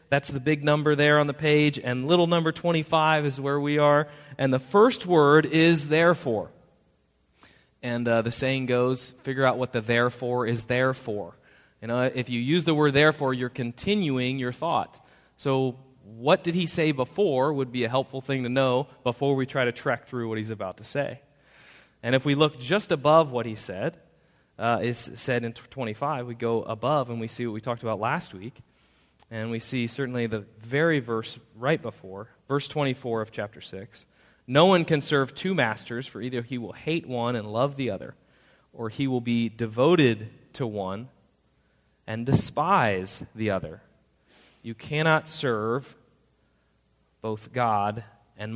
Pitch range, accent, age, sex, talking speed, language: 115-145 Hz, American, 30-49, male, 175 wpm, English